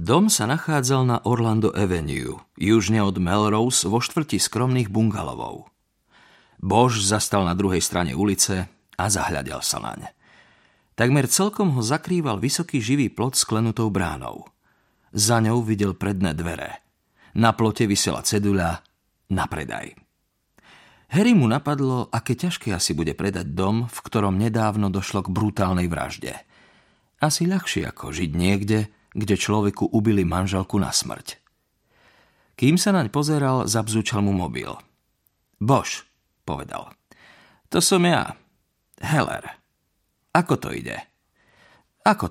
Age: 40-59